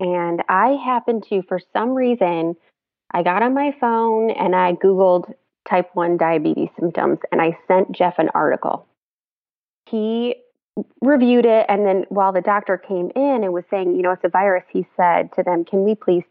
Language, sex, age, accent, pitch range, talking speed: English, female, 20-39, American, 180-215 Hz, 185 wpm